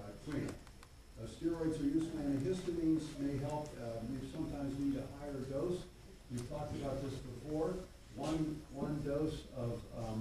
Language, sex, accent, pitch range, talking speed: English, male, American, 115-140 Hz, 140 wpm